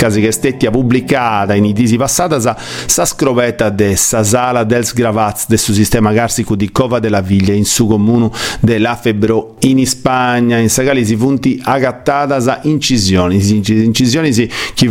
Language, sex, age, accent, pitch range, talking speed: Italian, male, 40-59, native, 105-130 Hz, 165 wpm